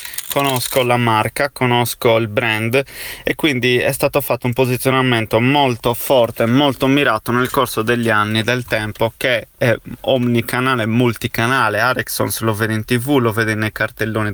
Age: 30-49